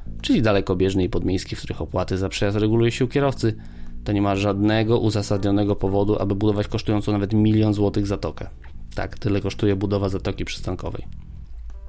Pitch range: 95-110 Hz